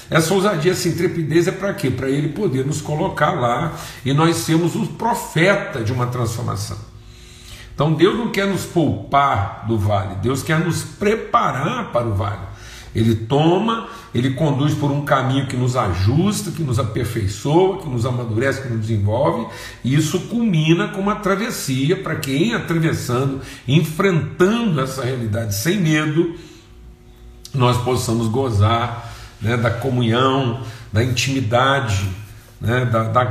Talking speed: 145 wpm